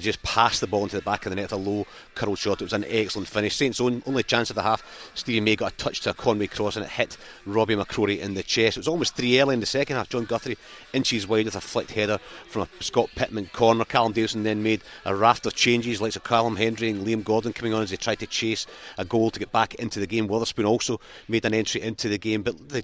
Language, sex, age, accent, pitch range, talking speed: English, male, 40-59, British, 100-115 Hz, 275 wpm